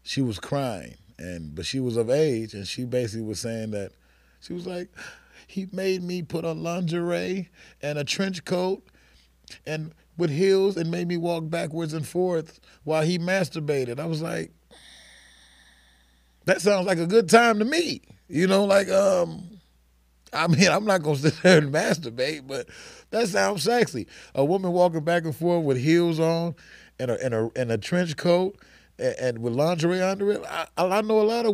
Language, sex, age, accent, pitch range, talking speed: English, male, 30-49, American, 125-180 Hz, 185 wpm